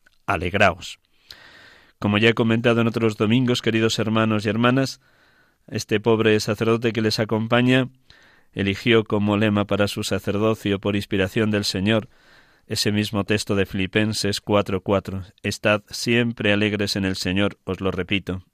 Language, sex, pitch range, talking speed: Spanish, male, 100-115 Hz, 140 wpm